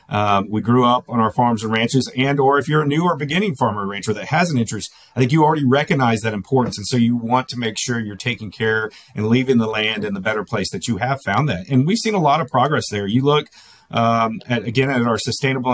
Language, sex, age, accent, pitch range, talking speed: English, male, 40-59, American, 110-130 Hz, 260 wpm